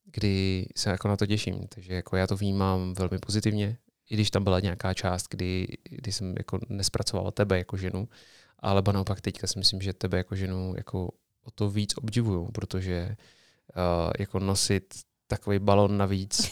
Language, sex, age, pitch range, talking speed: Slovak, male, 30-49, 95-110 Hz, 170 wpm